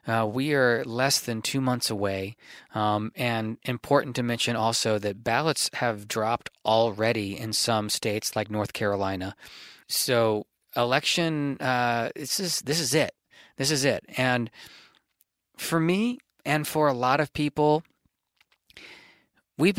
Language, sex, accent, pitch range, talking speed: English, male, American, 110-135 Hz, 140 wpm